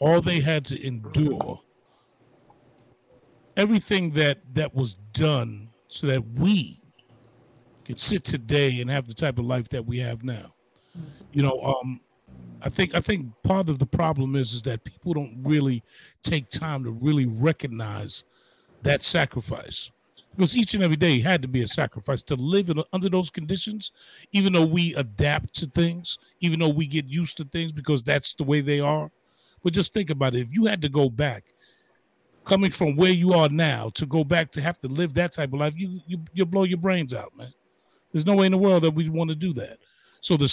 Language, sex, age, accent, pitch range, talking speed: English, male, 40-59, American, 130-170 Hz, 200 wpm